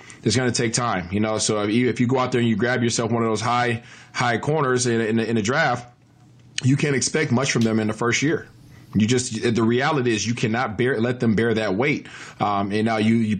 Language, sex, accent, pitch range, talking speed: English, male, American, 110-130 Hz, 270 wpm